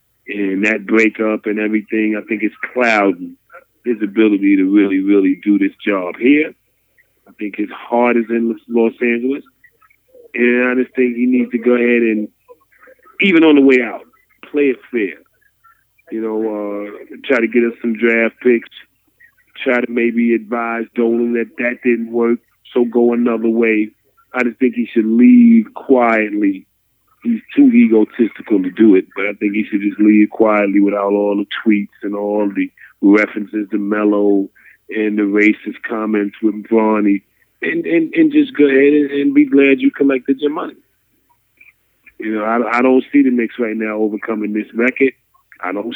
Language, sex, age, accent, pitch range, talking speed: English, male, 30-49, American, 110-155 Hz, 170 wpm